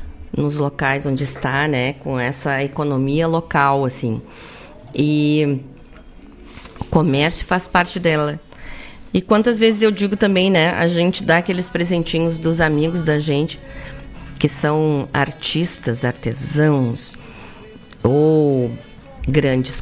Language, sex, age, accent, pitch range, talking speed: Portuguese, female, 40-59, Brazilian, 135-165 Hz, 115 wpm